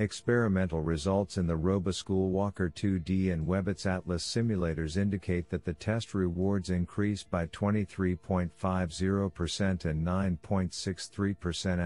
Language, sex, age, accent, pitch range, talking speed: English, male, 50-69, American, 85-100 Hz, 105 wpm